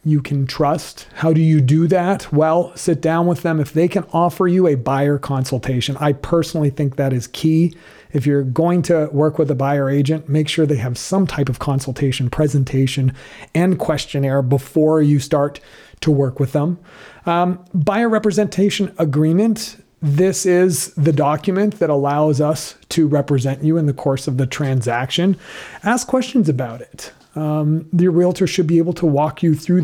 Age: 40-59